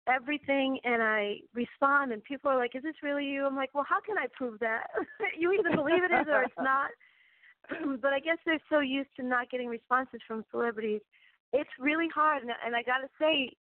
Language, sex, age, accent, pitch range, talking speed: English, female, 40-59, American, 225-280 Hz, 210 wpm